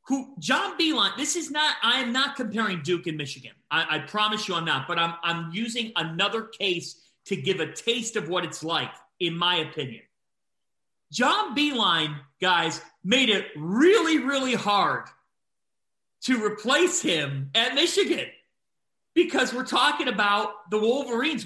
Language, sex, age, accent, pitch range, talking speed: English, male, 40-59, American, 165-235 Hz, 155 wpm